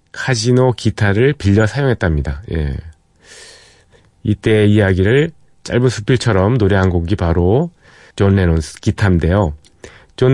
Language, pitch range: Korean, 85-115 Hz